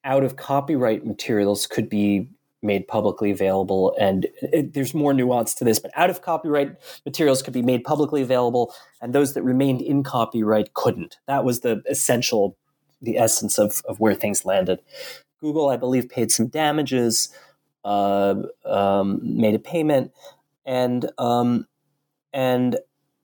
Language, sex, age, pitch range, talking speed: English, male, 30-49, 115-145 Hz, 140 wpm